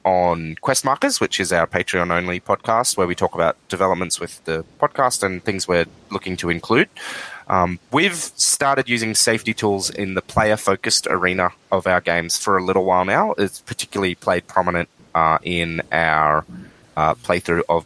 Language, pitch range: English, 90-110 Hz